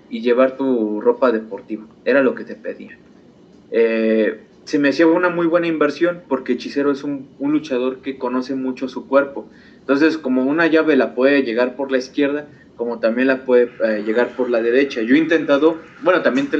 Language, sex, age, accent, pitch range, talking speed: Spanish, male, 30-49, Mexican, 125-170 Hz, 195 wpm